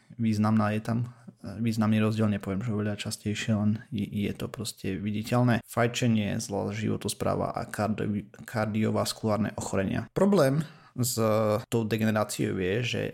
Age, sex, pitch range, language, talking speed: 30-49, male, 105-120 Hz, Slovak, 125 wpm